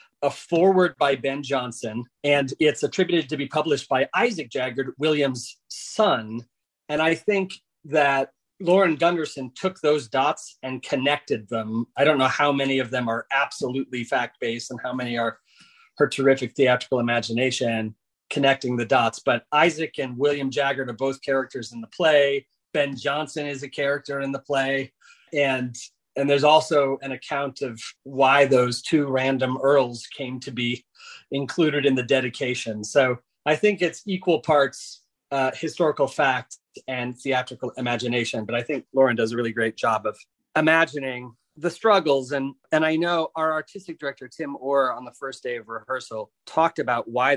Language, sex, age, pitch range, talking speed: English, male, 30-49, 125-150 Hz, 165 wpm